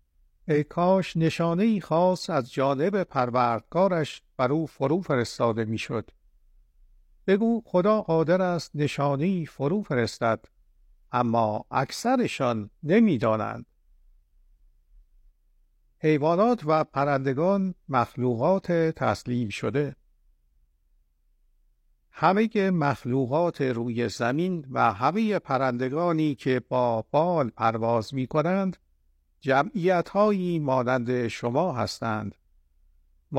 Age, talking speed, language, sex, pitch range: 50-69, 80 wpm, Persian, male, 105-165 Hz